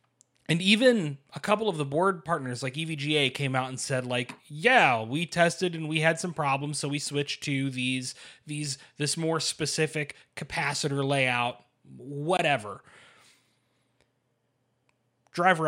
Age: 20-39